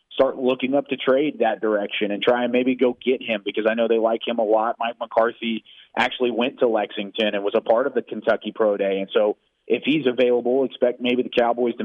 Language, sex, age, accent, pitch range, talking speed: English, male, 30-49, American, 120-145 Hz, 240 wpm